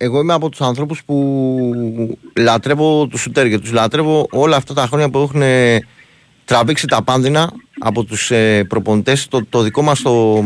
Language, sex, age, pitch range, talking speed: Greek, male, 30-49, 115-145 Hz, 160 wpm